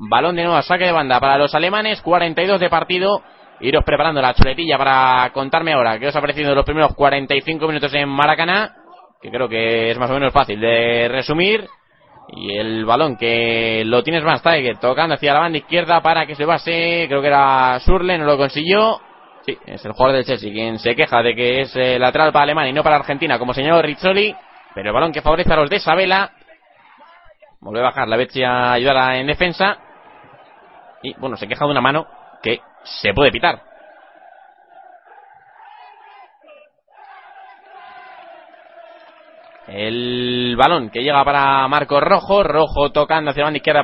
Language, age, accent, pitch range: Spanish, 20-39, Spanish, 130-190 Hz